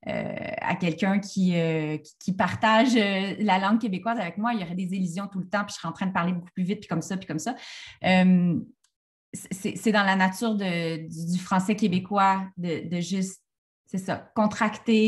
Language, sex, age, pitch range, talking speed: French, female, 30-49, 175-220 Hz, 205 wpm